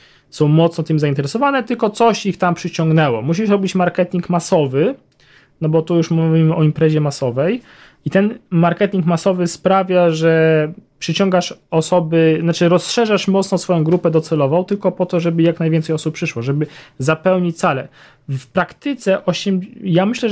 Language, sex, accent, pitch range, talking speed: Polish, male, native, 145-180 Hz, 150 wpm